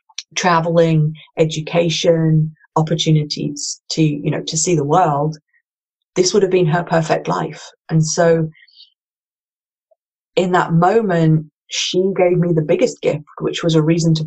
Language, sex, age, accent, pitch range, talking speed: English, female, 30-49, British, 155-175 Hz, 140 wpm